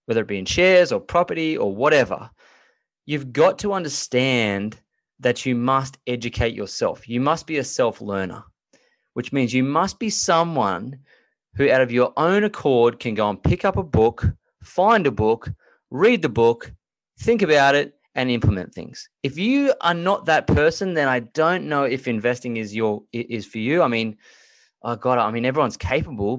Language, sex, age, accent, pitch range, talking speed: English, male, 20-39, Australian, 115-160 Hz, 180 wpm